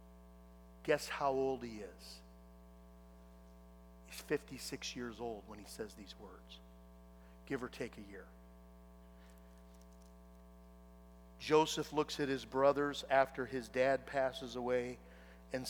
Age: 50-69